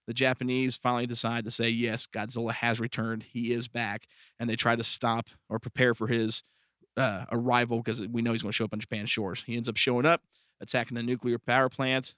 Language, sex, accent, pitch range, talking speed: English, male, American, 115-125 Hz, 220 wpm